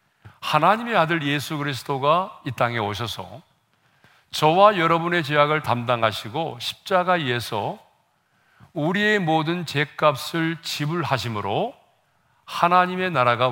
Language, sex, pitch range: Korean, male, 125-170 Hz